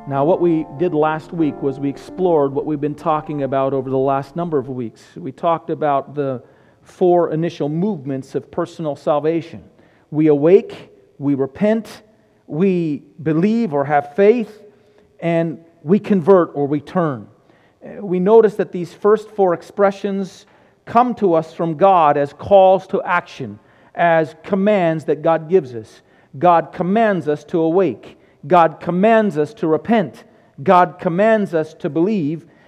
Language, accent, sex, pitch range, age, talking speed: English, American, male, 160-210 Hz, 40-59, 150 wpm